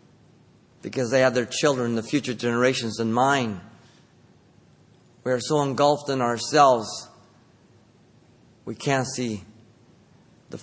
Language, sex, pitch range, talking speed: English, male, 120-170 Hz, 115 wpm